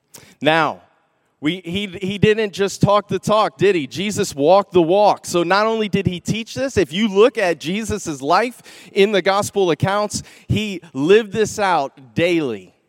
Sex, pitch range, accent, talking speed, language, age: male, 150-200 Hz, American, 170 wpm, English, 30-49